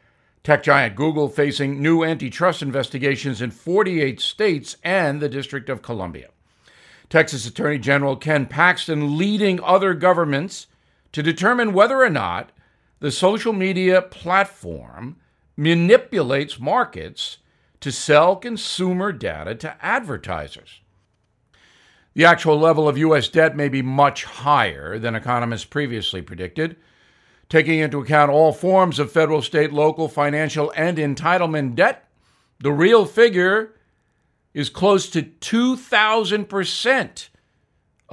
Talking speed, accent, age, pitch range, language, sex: 115 wpm, American, 60-79, 135-175 Hz, English, male